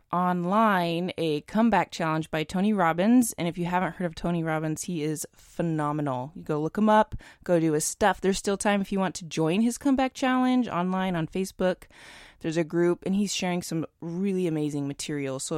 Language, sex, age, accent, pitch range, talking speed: English, female, 20-39, American, 150-185 Hz, 200 wpm